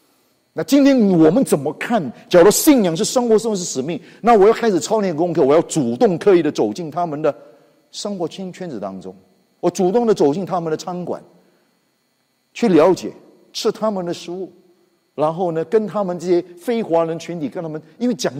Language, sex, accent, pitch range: Chinese, male, native, 140-220 Hz